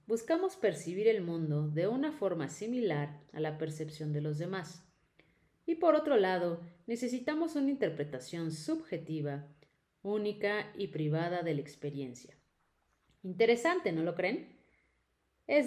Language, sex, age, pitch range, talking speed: Spanish, female, 30-49, 150-210 Hz, 125 wpm